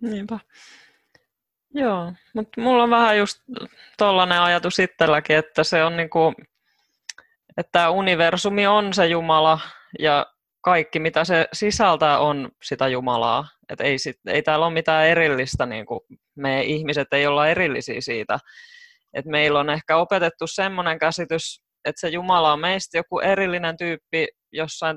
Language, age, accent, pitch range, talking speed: Finnish, 20-39, native, 135-175 Hz, 140 wpm